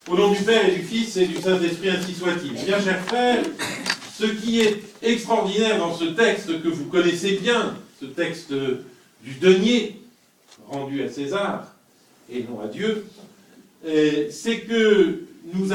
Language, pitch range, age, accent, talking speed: French, 155-215 Hz, 50-69, French, 150 wpm